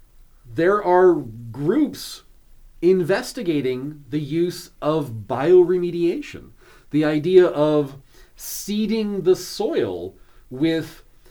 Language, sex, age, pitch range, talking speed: English, male, 40-59, 145-200 Hz, 80 wpm